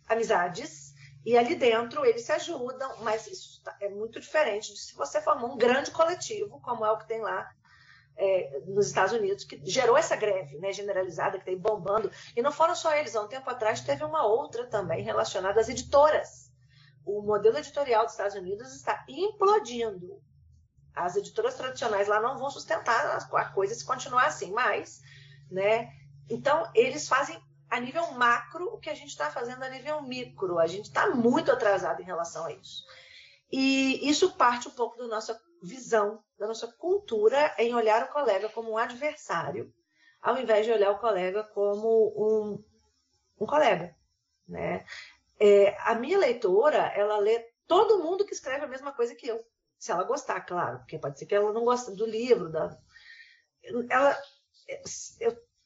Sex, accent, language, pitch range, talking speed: female, Brazilian, Portuguese, 205-300 Hz, 170 wpm